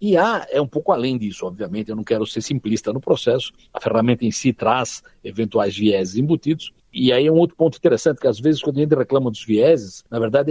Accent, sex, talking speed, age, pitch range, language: Brazilian, male, 235 wpm, 60-79, 120-170 Hz, Portuguese